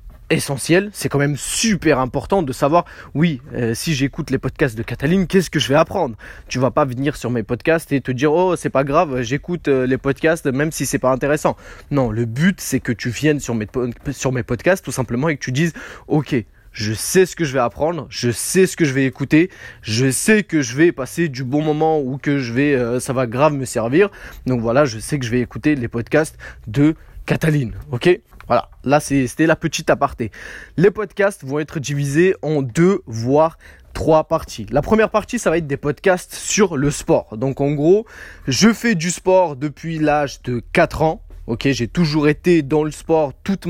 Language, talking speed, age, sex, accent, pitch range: French, 215 wpm, 20-39, male, French, 130-165 Hz